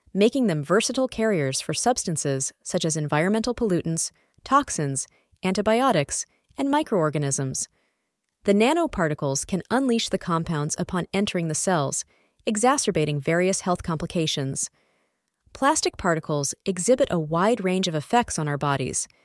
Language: English